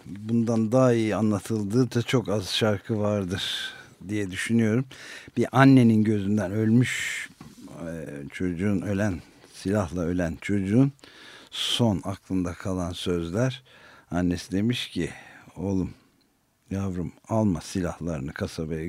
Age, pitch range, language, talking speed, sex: 50-69, 95-120 Hz, Turkish, 100 wpm, male